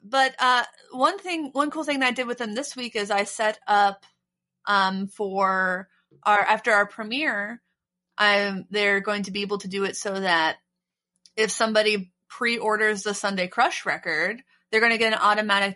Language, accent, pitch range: English, American, 195-245 Hz